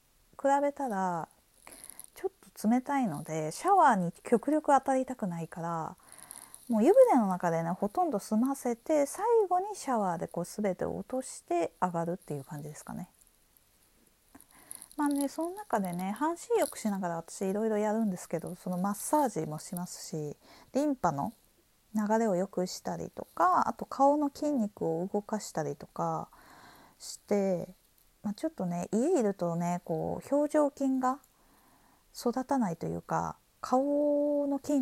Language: Japanese